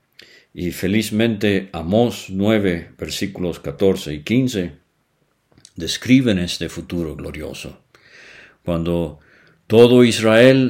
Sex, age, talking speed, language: male, 50-69, 85 wpm, English